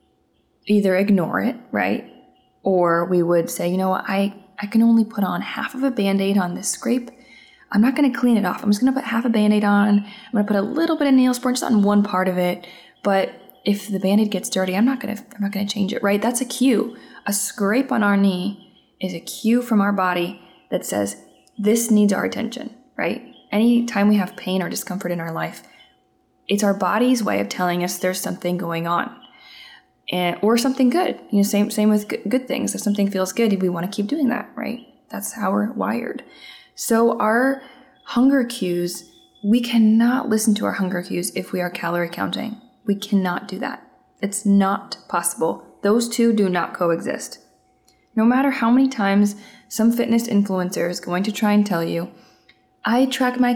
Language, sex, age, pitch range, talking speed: English, female, 20-39, 185-235 Hz, 210 wpm